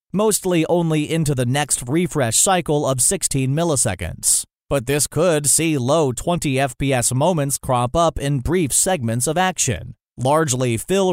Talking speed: 145 wpm